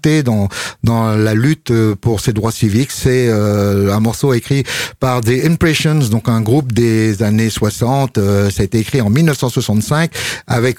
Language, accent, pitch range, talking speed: French, French, 110-135 Hz, 165 wpm